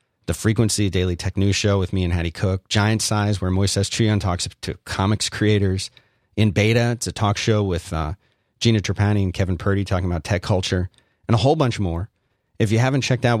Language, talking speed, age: English, 210 wpm, 30-49